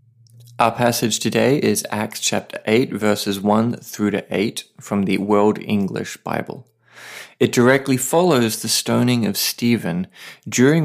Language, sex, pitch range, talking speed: English, male, 100-120 Hz, 140 wpm